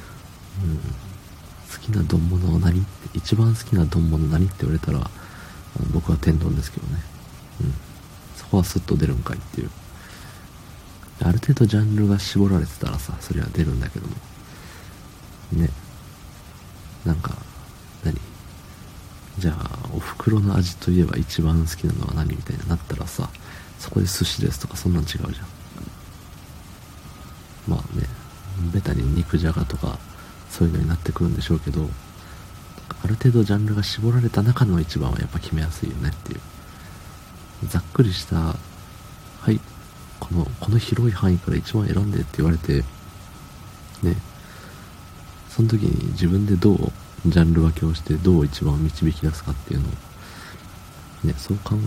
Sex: male